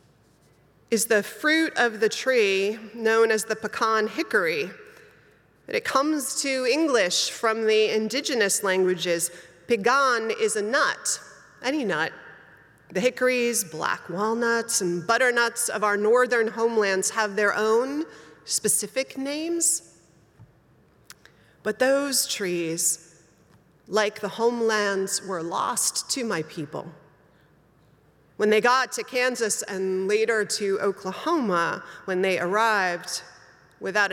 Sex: female